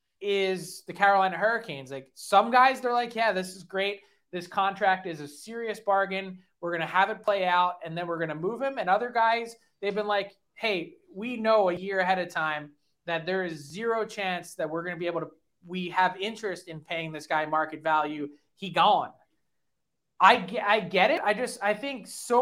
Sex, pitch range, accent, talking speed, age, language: male, 170-205 Hz, American, 215 wpm, 20-39, English